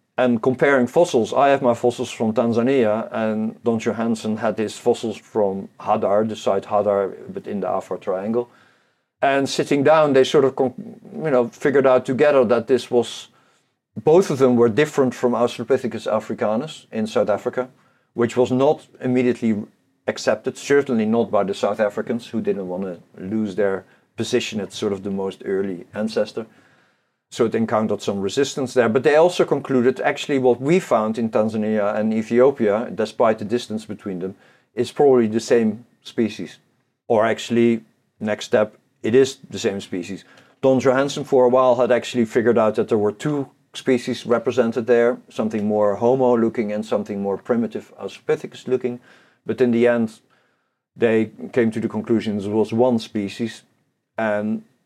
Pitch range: 110-130 Hz